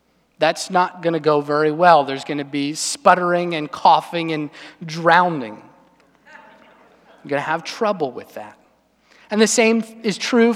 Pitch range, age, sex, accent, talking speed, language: 155-210 Hz, 30-49, male, American, 160 wpm, English